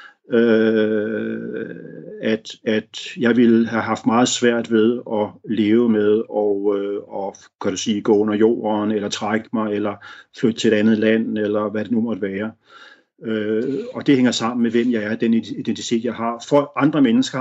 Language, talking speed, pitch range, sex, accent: Danish, 185 wpm, 110-130 Hz, male, native